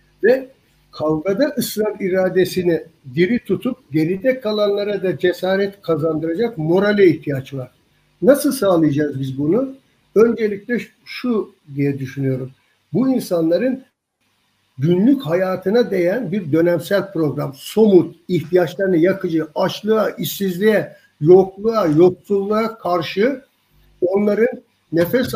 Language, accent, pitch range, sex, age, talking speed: Turkish, native, 170-220 Hz, male, 60-79, 95 wpm